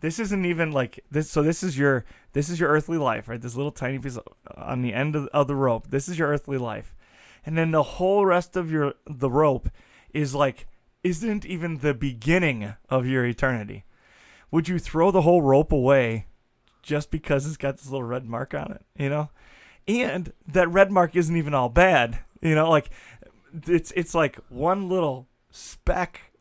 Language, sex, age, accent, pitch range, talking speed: English, male, 20-39, American, 130-165 Hz, 190 wpm